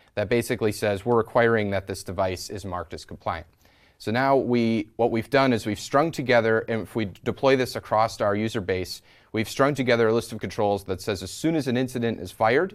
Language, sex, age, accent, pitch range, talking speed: English, male, 30-49, American, 100-125 Hz, 220 wpm